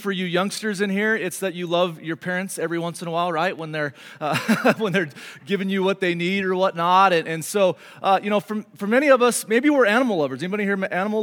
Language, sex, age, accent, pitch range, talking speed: English, male, 30-49, American, 165-230 Hz, 250 wpm